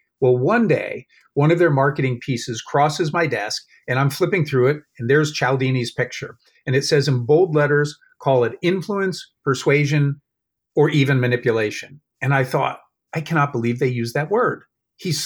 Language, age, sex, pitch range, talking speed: English, 40-59, male, 135-165 Hz, 175 wpm